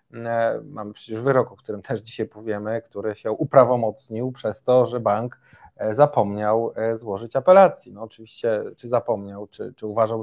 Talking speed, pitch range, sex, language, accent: 145 wpm, 110-130 Hz, male, Polish, native